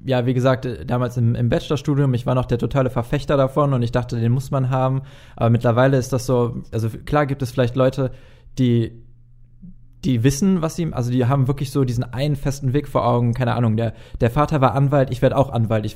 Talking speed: 225 wpm